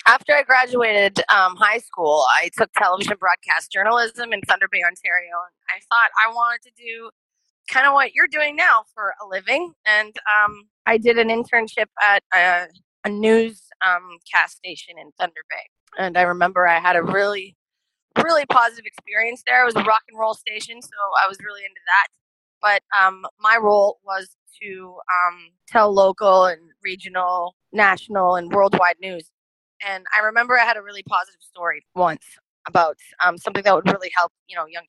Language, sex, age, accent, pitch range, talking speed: English, female, 20-39, American, 180-225 Hz, 180 wpm